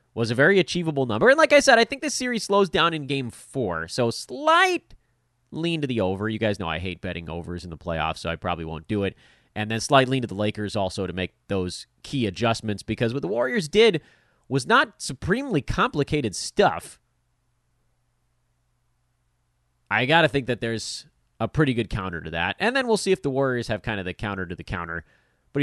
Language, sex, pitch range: English, male, 100-145 Hz